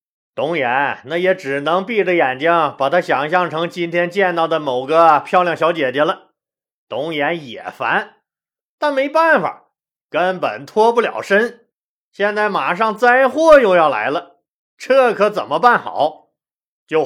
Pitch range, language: 175-235 Hz, Chinese